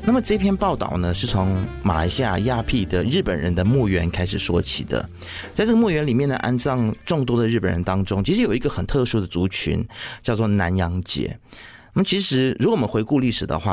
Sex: male